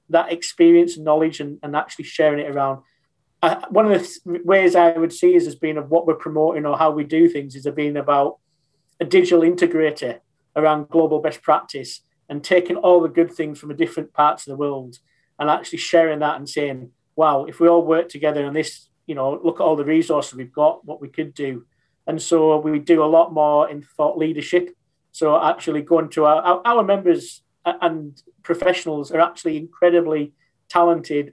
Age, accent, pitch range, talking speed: 40-59, British, 150-170 Hz, 205 wpm